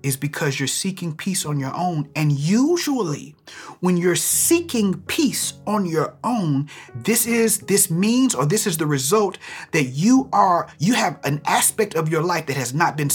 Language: English